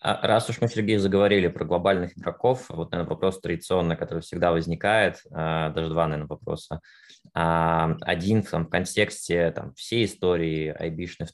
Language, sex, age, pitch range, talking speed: Russian, male, 20-39, 80-90 Hz, 150 wpm